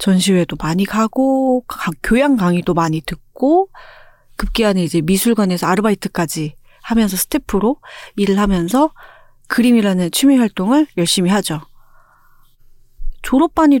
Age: 40-59